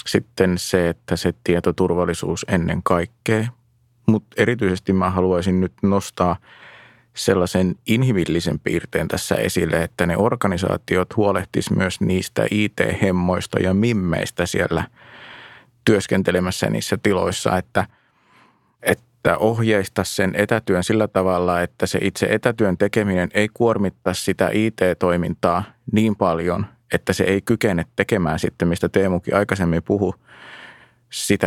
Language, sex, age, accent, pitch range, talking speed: Finnish, male, 20-39, native, 90-105 Hz, 115 wpm